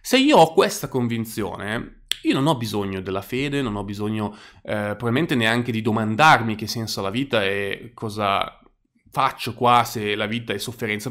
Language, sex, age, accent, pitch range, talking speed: Italian, male, 20-39, native, 110-135 Hz, 180 wpm